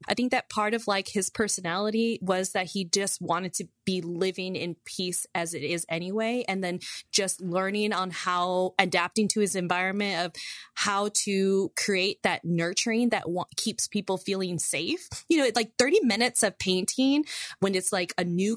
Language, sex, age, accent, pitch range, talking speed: English, female, 20-39, American, 180-215 Hz, 180 wpm